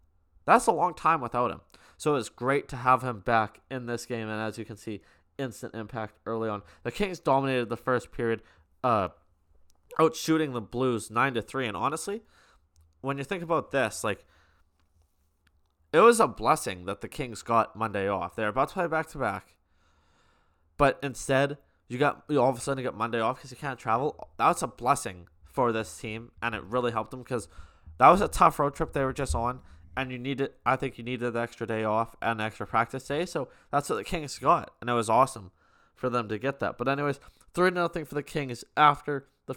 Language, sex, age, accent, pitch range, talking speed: English, male, 20-39, American, 105-140 Hz, 215 wpm